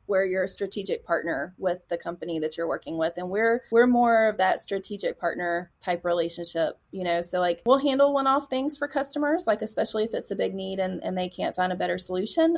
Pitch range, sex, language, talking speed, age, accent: 180-235 Hz, female, English, 225 wpm, 20-39, American